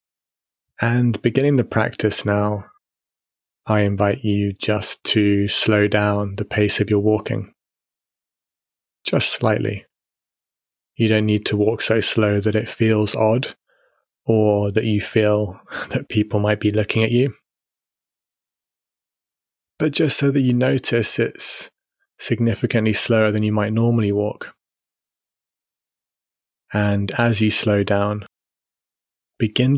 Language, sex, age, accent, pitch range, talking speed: English, male, 20-39, British, 105-115 Hz, 125 wpm